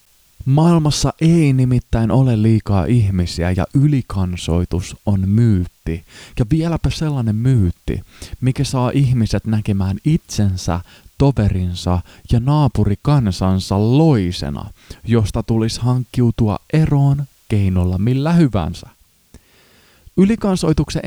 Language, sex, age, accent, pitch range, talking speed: Finnish, male, 20-39, native, 95-130 Hz, 90 wpm